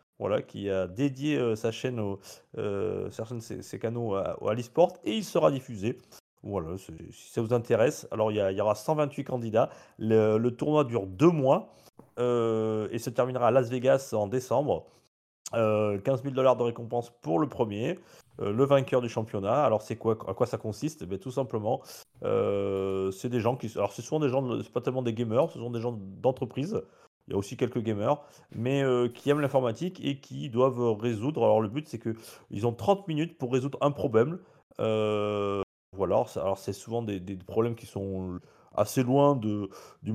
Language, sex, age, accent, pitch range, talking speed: French, male, 40-59, French, 105-130 Hz, 200 wpm